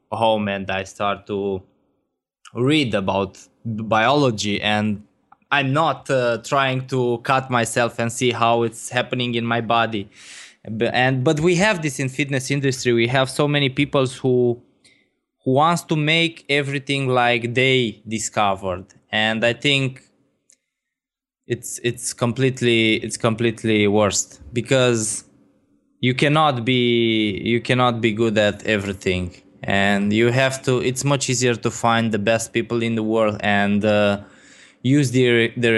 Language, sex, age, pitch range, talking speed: German, male, 20-39, 105-130 Hz, 145 wpm